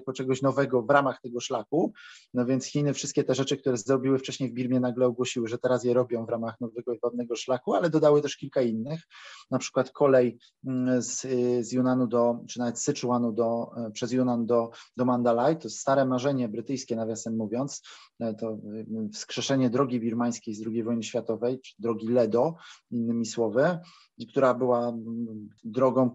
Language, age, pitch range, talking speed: Polish, 20-39, 120-135 Hz, 165 wpm